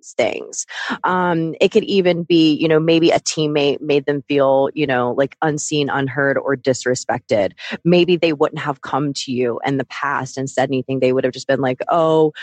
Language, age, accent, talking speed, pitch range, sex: English, 20-39, American, 200 wpm, 135-165 Hz, female